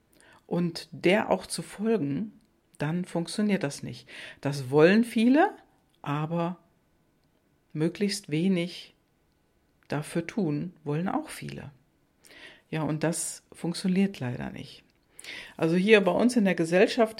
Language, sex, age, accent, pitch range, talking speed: German, female, 50-69, German, 150-190 Hz, 115 wpm